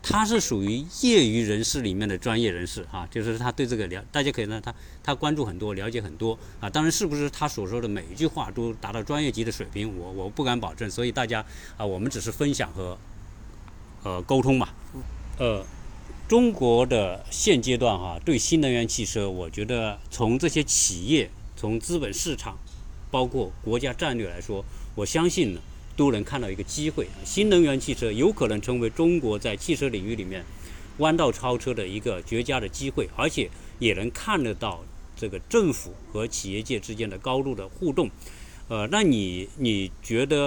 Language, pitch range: Chinese, 100-135 Hz